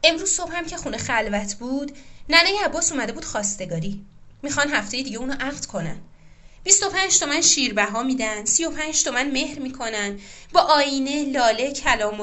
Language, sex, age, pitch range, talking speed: Persian, female, 20-39, 210-285 Hz, 150 wpm